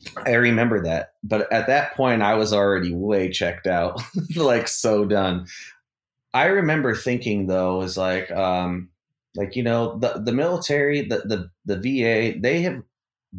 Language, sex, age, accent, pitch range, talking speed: English, male, 30-49, American, 90-110 Hz, 150 wpm